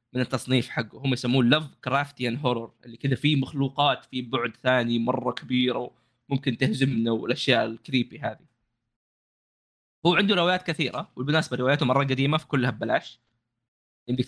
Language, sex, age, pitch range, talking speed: Arabic, male, 20-39, 120-140 Hz, 140 wpm